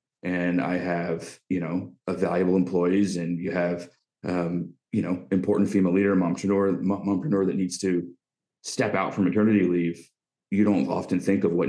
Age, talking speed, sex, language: 30-49, 170 wpm, male, English